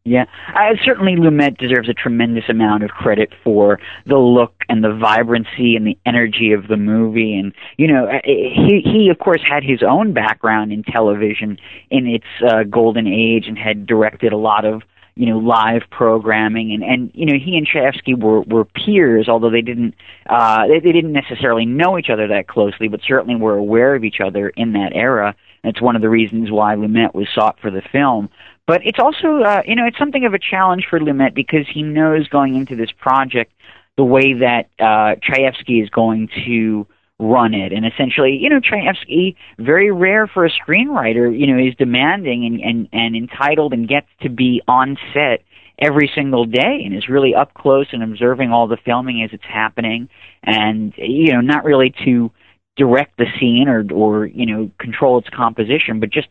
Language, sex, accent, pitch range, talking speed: English, male, American, 110-135 Hz, 195 wpm